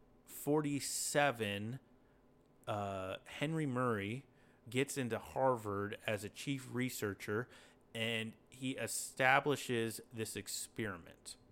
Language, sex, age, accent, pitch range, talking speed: English, male, 30-49, American, 115-145 Hz, 85 wpm